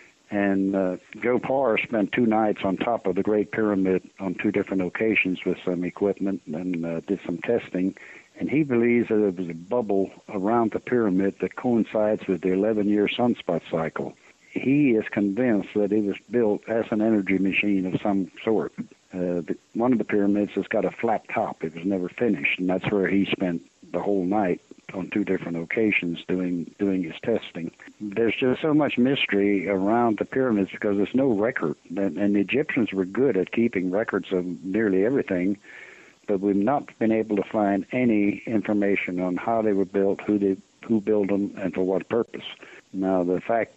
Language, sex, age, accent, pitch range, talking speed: English, male, 60-79, American, 95-110 Hz, 190 wpm